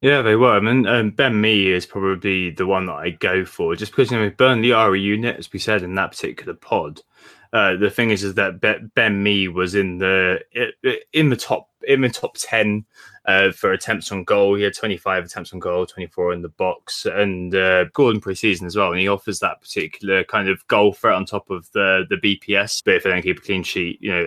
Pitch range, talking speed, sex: 95-115 Hz, 240 wpm, male